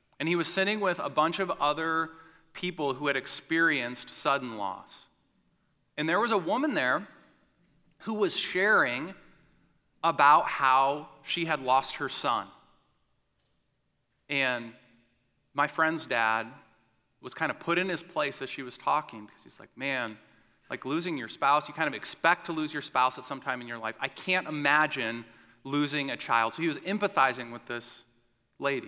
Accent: American